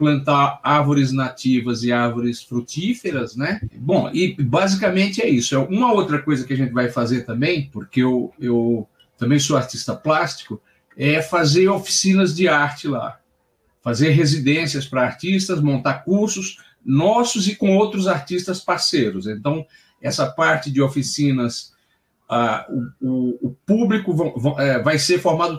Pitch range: 130-170 Hz